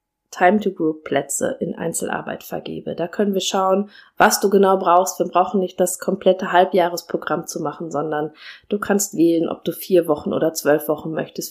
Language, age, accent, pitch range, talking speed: German, 20-39, German, 155-190 Hz, 165 wpm